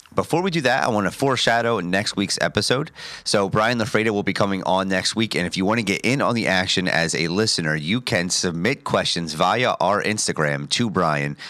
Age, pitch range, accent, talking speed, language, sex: 30-49, 85-110 Hz, American, 220 wpm, English, male